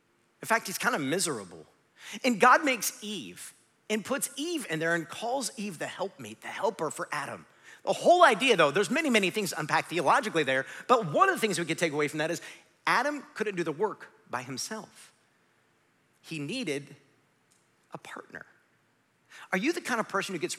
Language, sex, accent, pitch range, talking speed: English, male, American, 140-210 Hz, 190 wpm